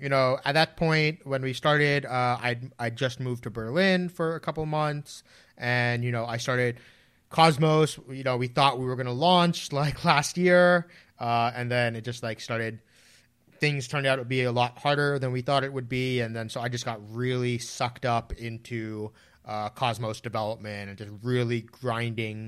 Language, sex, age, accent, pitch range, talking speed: English, male, 30-49, American, 115-140 Hz, 200 wpm